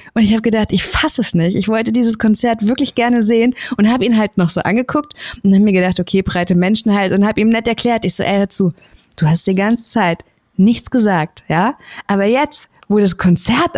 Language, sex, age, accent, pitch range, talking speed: German, female, 20-39, German, 200-255 Hz, 230 wpm